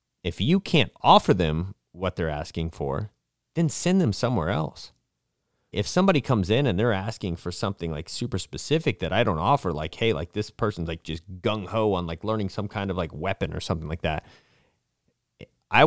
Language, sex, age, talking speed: English, male, 30-49, 195 wpm